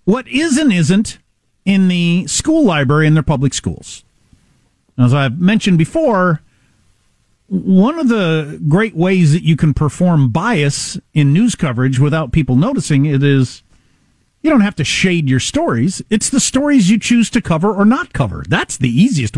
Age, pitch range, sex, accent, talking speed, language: 50-69, 135-205 Hz, male, American, 165 wpm, English